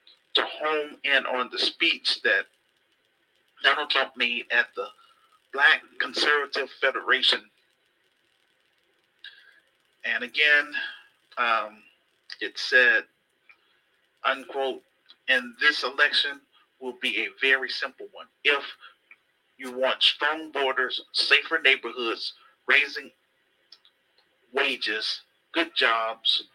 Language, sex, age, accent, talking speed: English, male, 40-59, American, 95 wpm